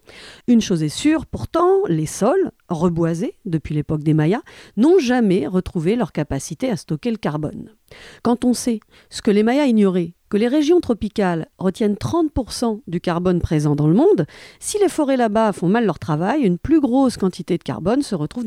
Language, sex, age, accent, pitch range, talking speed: French, female, 50-69, French, 165-245 Hz, 185 wpm